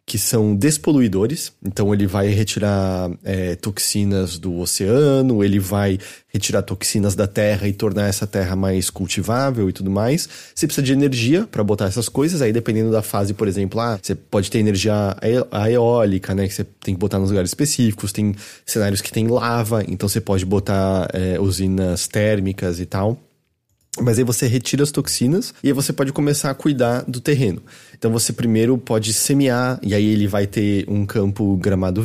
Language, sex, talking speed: Portuguese, male, 185 wpm